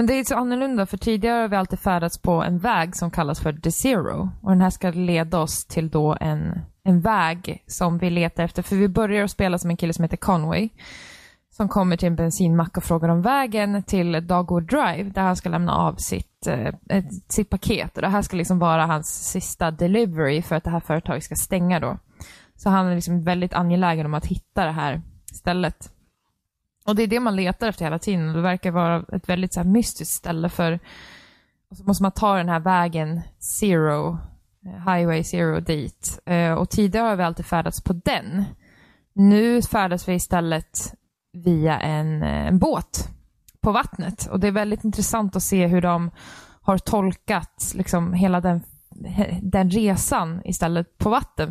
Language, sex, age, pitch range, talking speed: Swedish, female, 20-39, 170-195 Hz, 190 wpm